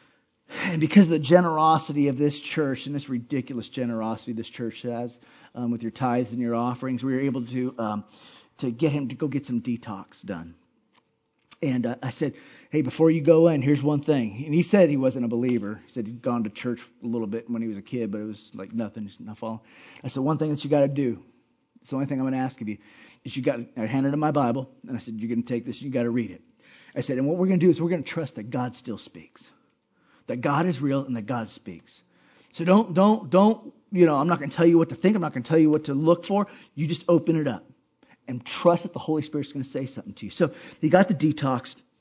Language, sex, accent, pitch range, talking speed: English, male, American, 120-160 Hz, 275 wpm